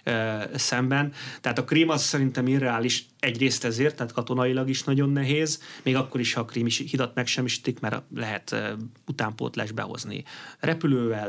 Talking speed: 150 wpm